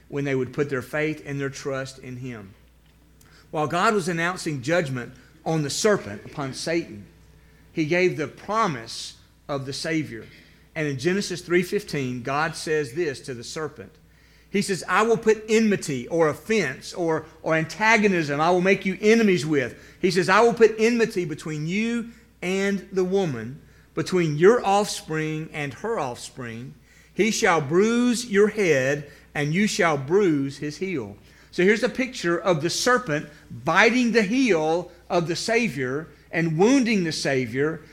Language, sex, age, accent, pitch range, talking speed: English, male, 40-59, American, 145-205 Hz, 160 wpm